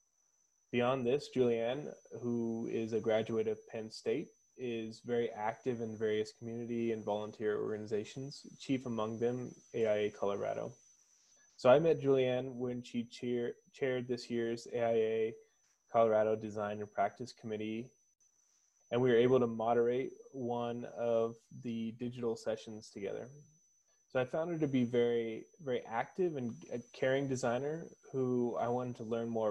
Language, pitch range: English, 110-125 Hz